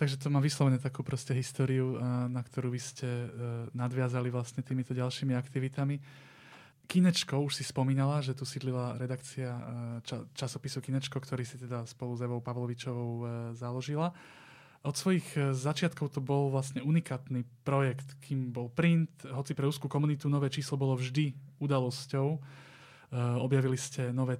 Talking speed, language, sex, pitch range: 145 wpm, Slovak, male, 125-140 Hz